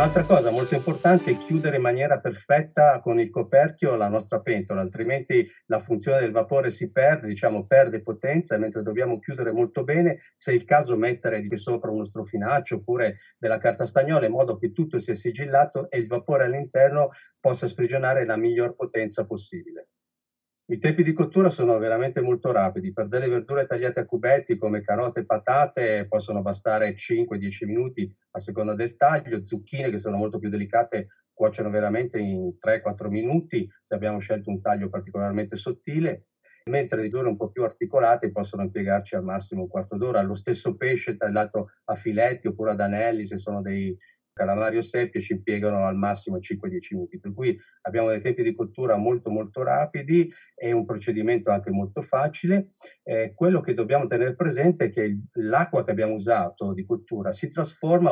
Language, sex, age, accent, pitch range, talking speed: Italian, male, 40-59, native, 110-180 Hz, 175 wpm